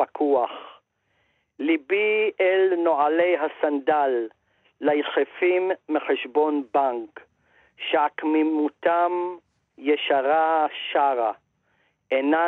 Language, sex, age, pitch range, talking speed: Hebrew, male, 50-69, 140-175 Hz, 60 wpm